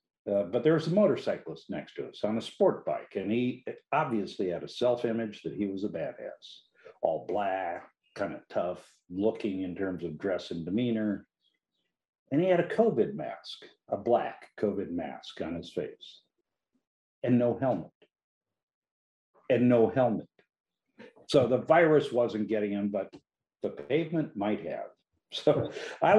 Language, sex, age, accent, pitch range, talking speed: English, male, 60-79, American, 100-130 Hz, 155 wpm